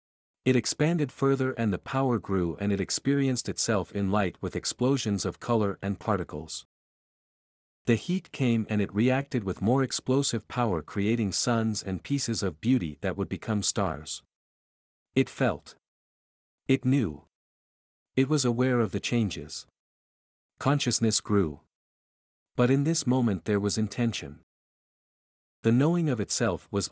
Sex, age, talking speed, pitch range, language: male, 50-69, 140 wpm, 95-130 Hz, English